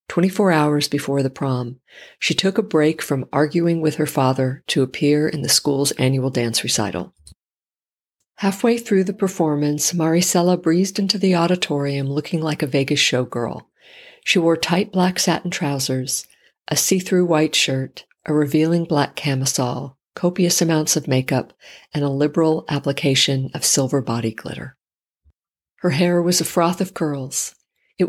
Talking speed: 150 wpm